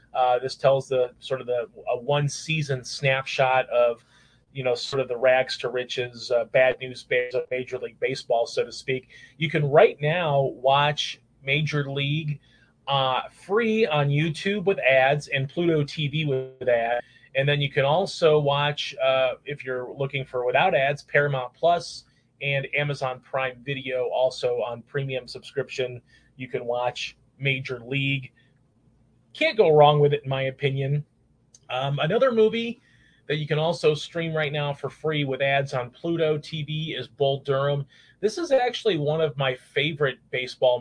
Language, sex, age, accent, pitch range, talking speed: English, male, 30-49, American, 130-150 Hz, 165 wpm